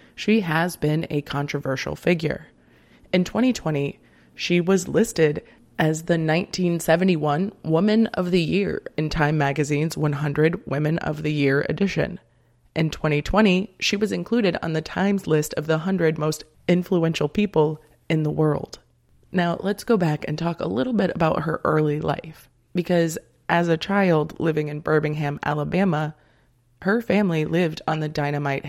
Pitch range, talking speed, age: 150-175 Hz, 150 wpm, 20-39